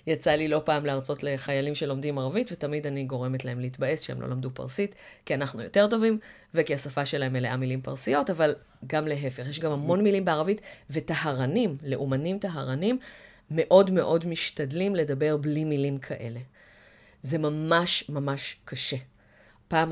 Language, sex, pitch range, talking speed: Hebrew, female, 135-170 Hz, 150 wpm